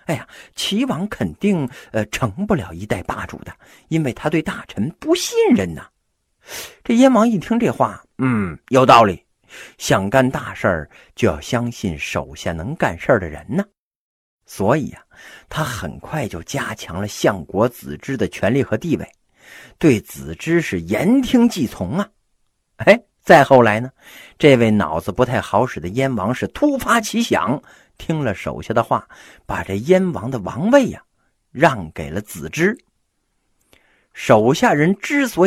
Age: 50-69